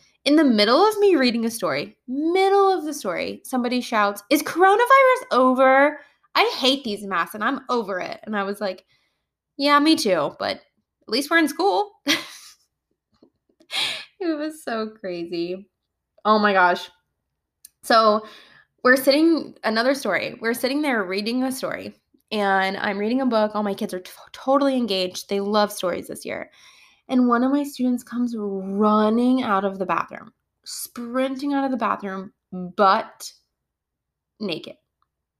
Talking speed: 155 wpm